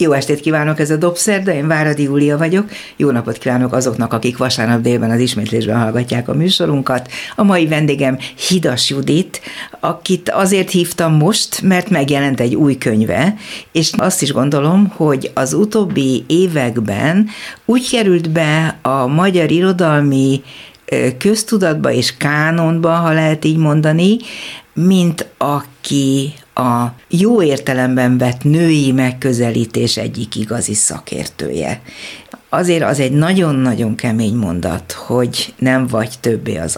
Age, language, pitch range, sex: 60-79, Hungarian, 120-170 Hz, female